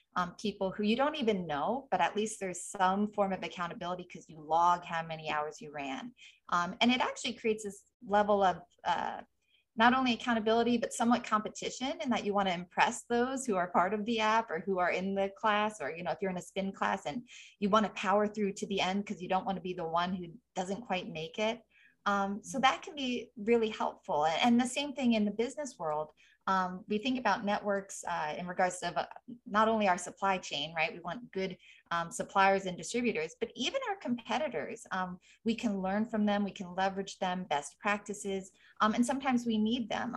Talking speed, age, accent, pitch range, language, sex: 225 wpm, 20-39, American, 180-225 Hz, English, female